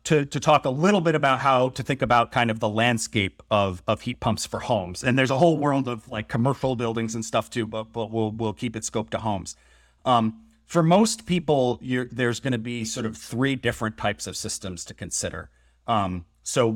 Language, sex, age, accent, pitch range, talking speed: English, male, 30-49, American, 105-120 Hz, 220 wpm